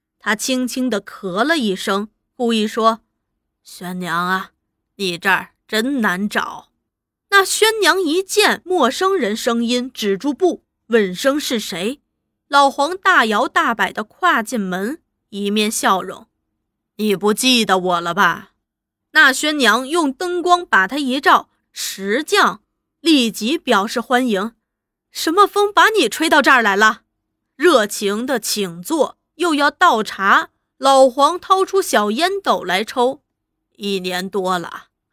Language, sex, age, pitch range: Chinese, female, 20-39, 200-285 Hz